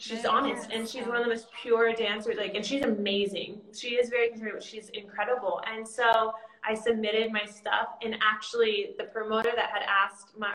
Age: 20-39